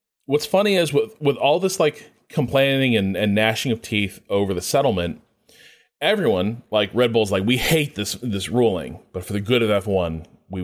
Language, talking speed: English, 190 wpm